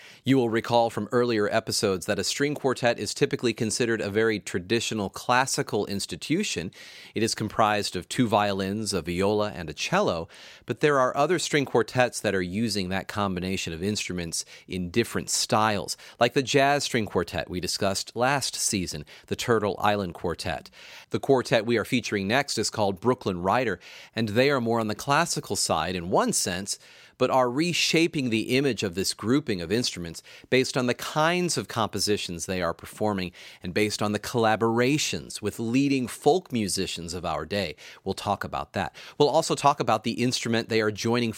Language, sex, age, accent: English, male, 30-49, American